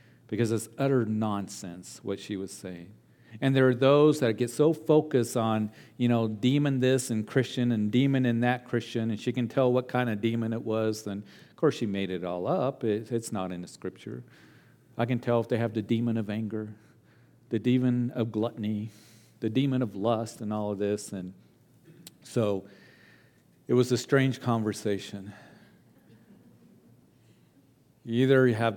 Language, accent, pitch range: English, American, 105-125 Hz